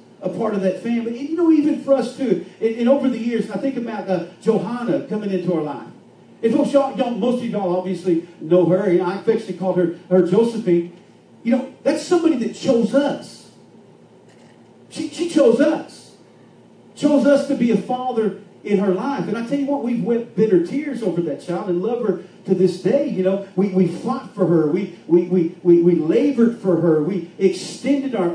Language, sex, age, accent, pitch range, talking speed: English, male, 40-59, American, 180-240 Hz, 215 wpm